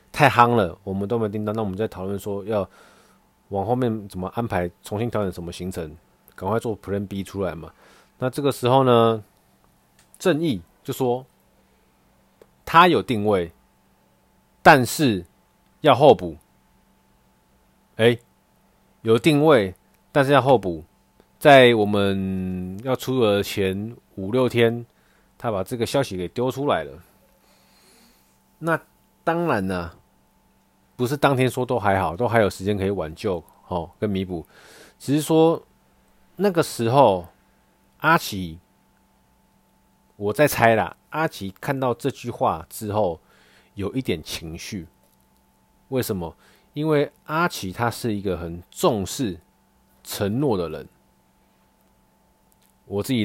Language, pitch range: Chinese, 90-130 Hz